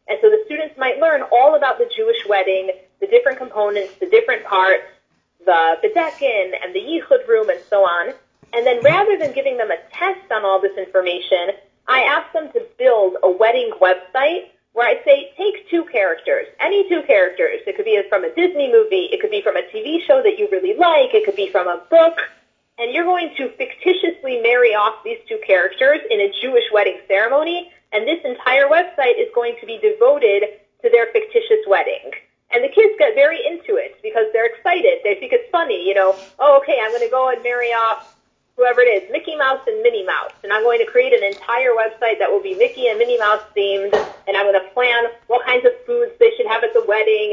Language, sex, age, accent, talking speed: English, female, 30-49, American, 215 wpm